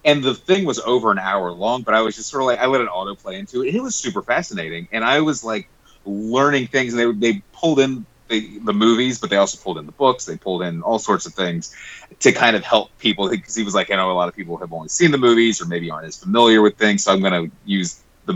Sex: male